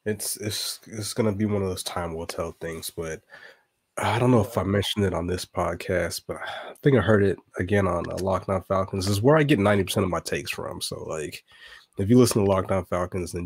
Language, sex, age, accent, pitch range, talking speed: English, male, 20-39, American, 90-105 Hz, 245 wpm